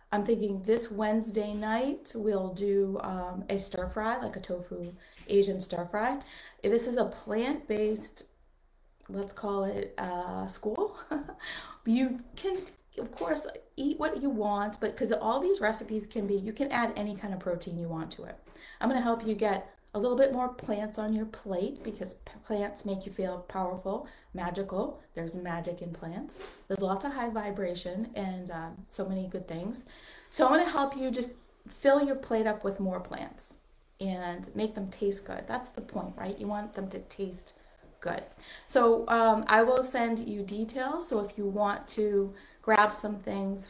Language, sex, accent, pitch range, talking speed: English, female, American, 190-230 Hz, 185 wpm